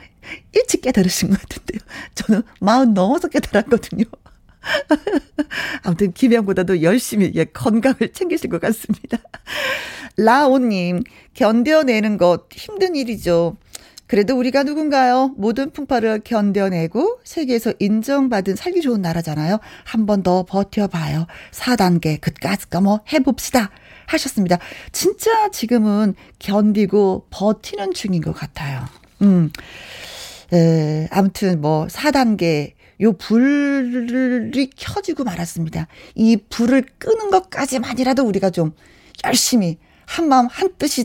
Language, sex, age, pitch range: Korean, female, 40-59, 190-265 Hz